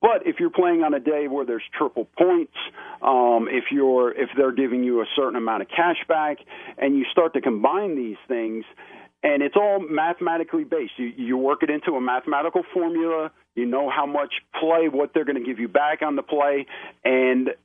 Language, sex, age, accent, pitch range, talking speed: English, male, 40-59, American, 120-165 Hz, 205 wpm